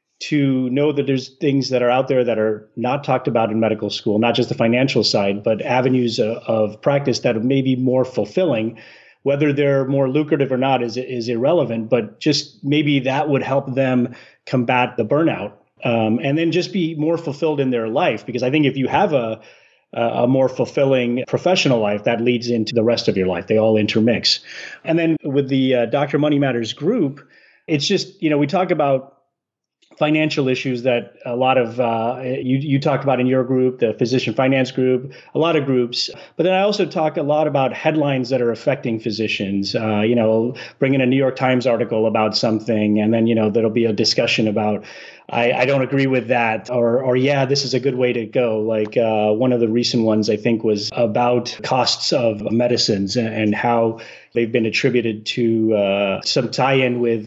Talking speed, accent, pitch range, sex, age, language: 205 wpm, American, 115-140 Hz, male, 30-49, English